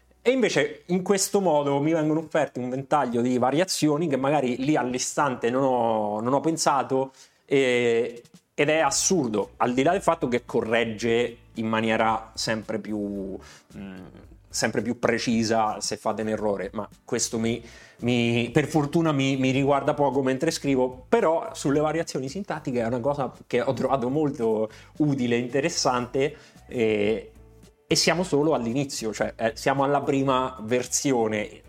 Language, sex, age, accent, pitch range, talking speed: Italian, male, 30-49, native, 110-140 Hz, 150 wpm